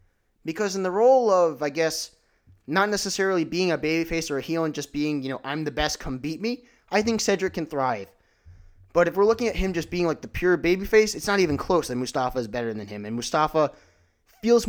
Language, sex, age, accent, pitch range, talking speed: English, male, 20-39, American, 120-180 Hz, 230 wpm